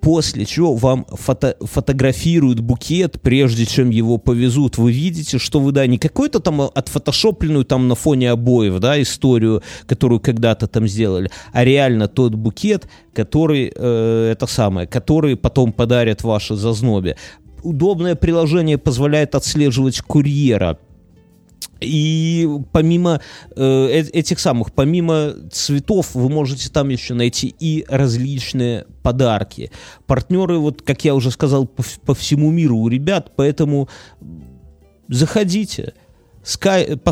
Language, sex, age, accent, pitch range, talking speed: Russian, male, 30-49, native, 120-160 Hz, 125 wpm